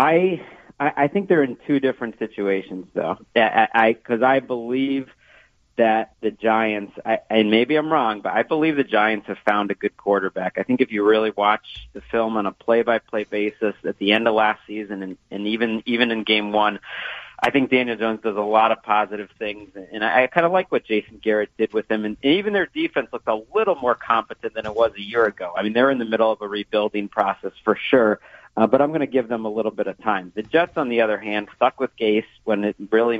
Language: English